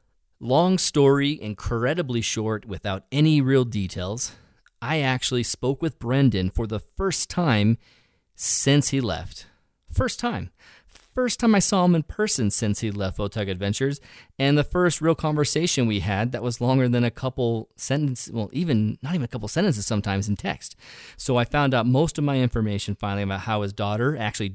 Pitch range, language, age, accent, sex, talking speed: 105-135 Hz, English, 30-49, American, male, 175 wpm